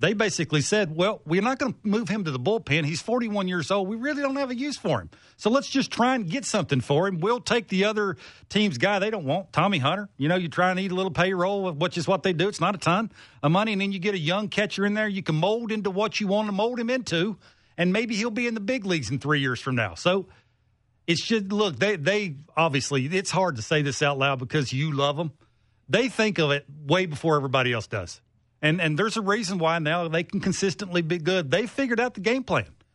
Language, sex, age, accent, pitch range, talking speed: English, male, 40-59, American, 145-210 Hz, 260 wpm